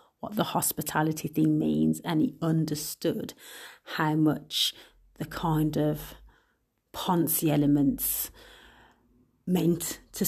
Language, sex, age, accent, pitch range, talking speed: English, female, 30-49, British, 150-175 Hz, 100 wpm